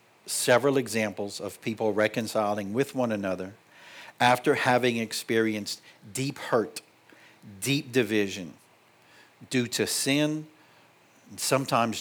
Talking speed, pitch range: 100 wpm, 110-125 Hz